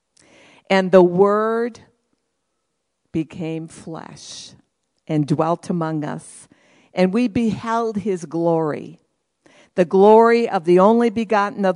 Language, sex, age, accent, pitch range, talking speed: English, female, 50-69, American, 155-195 Hz, 105 wpm